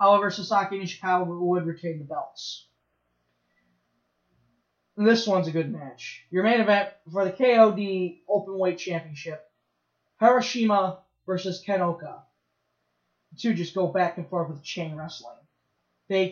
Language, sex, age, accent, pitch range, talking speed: English, male, 20-39, American, 175-250 Hz, 130 wpm